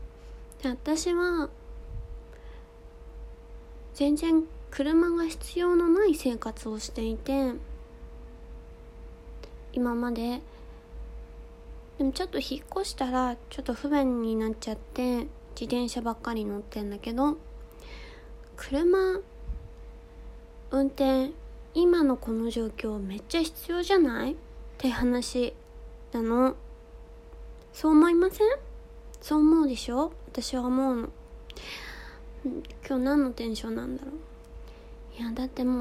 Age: 20-39